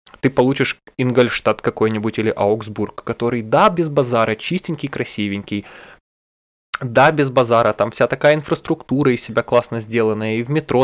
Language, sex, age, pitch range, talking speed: Russian, male, 20-39, 115-145 Hz, 145 wpm